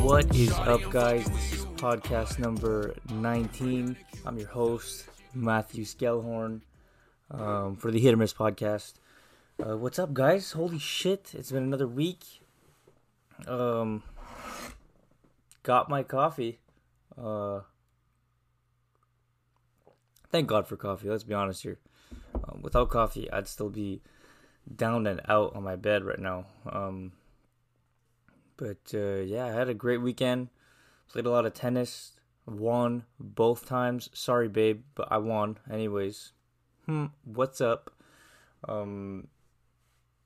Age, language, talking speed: 20-39, English, 125 wpm